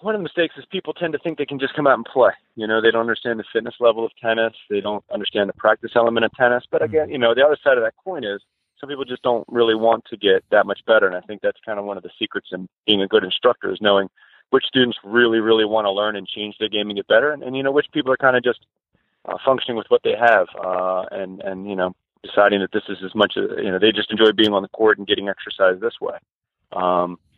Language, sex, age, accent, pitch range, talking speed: English, male, 30-49, American, 100-145 Hz, 285 wpm